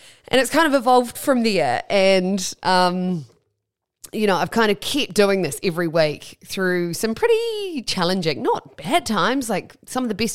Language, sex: English, female